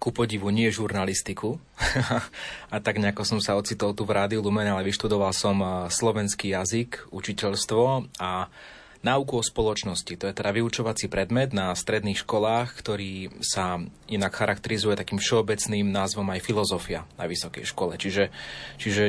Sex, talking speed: male, 145 wpm